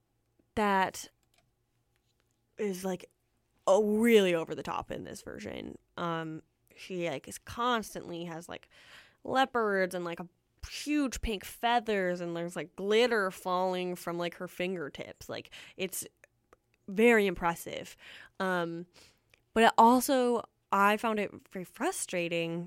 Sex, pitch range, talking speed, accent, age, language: female, 175-240 Hz, 120 wpm, American, 10-29, English